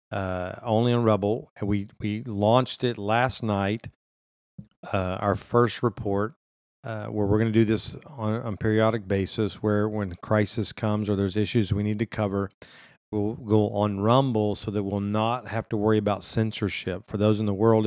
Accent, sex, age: American, male, 50-69